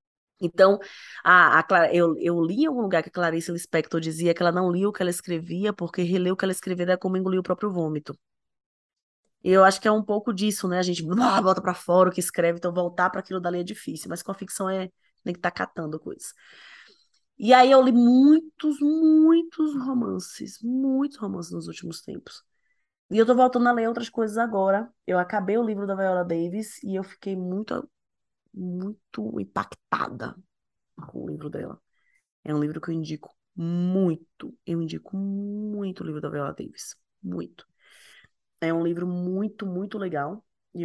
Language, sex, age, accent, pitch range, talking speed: Portuguese, female, 20-39, Brazilian, 170-210 Hz, 190 wpm